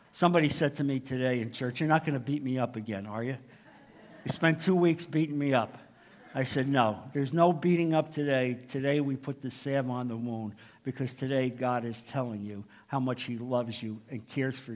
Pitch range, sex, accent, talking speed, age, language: 135-225 Hz, male, American, 220 wpm, 50-69, English